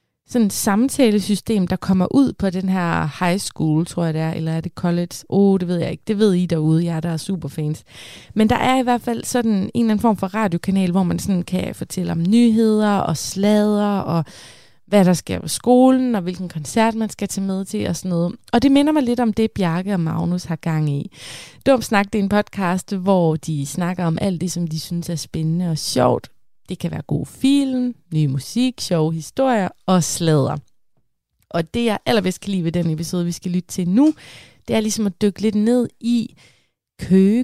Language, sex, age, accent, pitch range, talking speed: Danish, female, 20-39, native, 170-220 Hz, 220 wpm